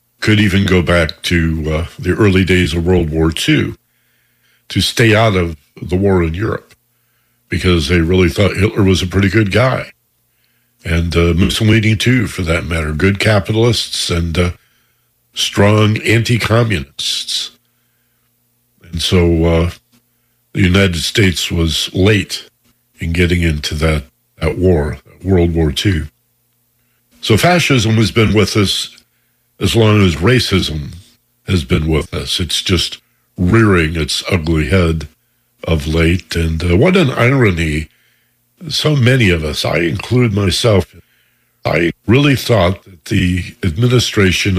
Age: 60-79